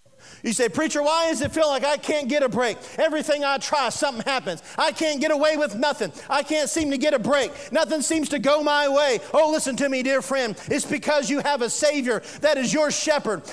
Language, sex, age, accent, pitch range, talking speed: English, male, 40-59, American, 210-305 Hz, 235 wpm